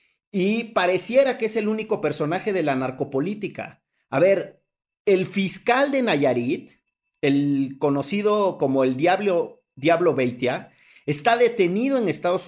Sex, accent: male, Mexican